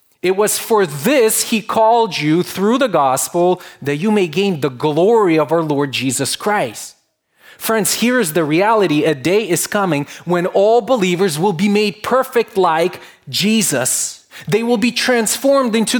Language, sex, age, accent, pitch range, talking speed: English, male, 30-49, Canadian, 155-205 Hz, 165 wpm